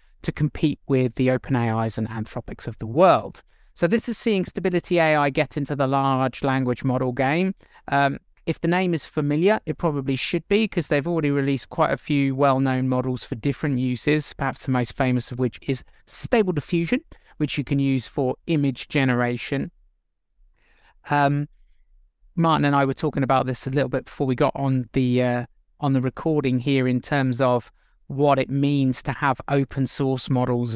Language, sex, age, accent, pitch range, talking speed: English, male, 20-39, British, 120-140 Hz, 180 wpm